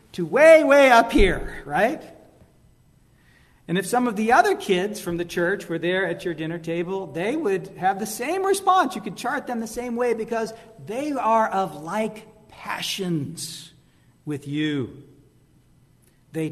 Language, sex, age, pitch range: English, male, 50-69, 165-235 Hz